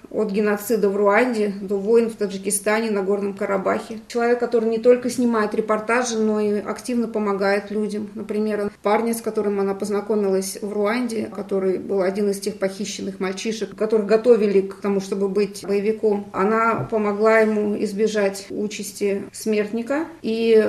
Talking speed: 150 wpm